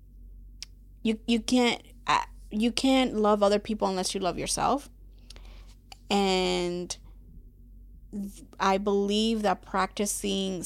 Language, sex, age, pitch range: English, female, 20-39, 185-220 Hz